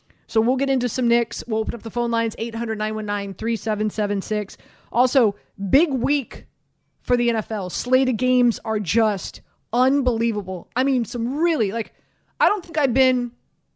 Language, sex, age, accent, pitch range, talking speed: English, female, 30-49, American, 195-245 Hz, 150 wpm